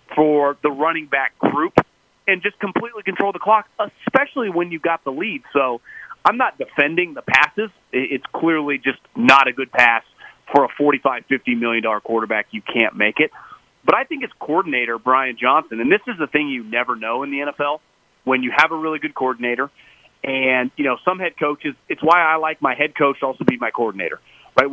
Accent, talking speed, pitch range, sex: American, 205 wpm, 130-170 Hz, male